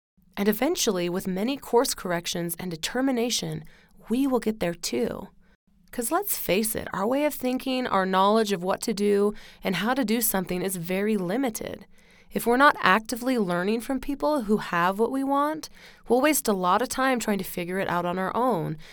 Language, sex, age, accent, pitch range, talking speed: English, female, 20-39, American, 185-245 Hz, 195 wpm